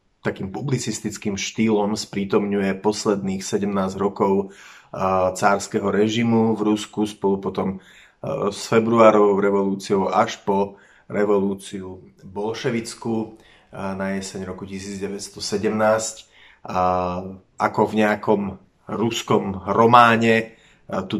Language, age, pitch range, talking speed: Slovak, 30-49, 95-110 Hz, 85 wpm